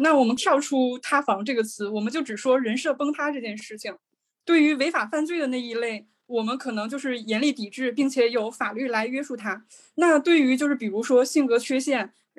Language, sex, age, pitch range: Chinese, female, 20-39, 220-275 Hz